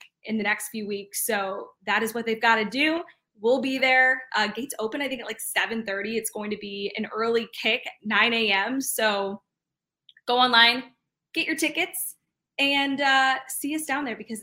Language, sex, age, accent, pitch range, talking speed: English, female, 20-39, American, 210-255 Hz, 195 wpm